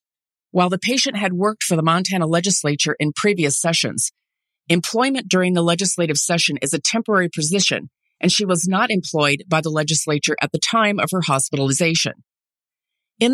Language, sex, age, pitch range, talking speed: English, female, 40-59, 155-215 Hz, 160 wpm